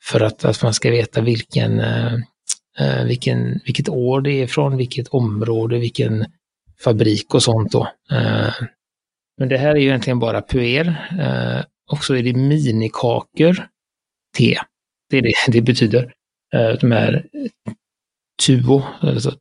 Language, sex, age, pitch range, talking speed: Swedish, male, 30-49, 115-135 Hz, 125 wpm